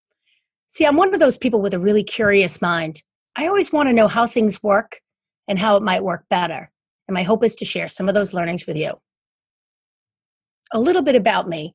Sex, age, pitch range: female, 40-59, 185-220 Hz